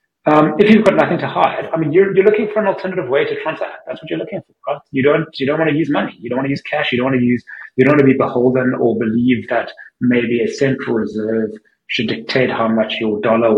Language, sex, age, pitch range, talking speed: English, male, 30-49, 115-150 Hz, 275 wpm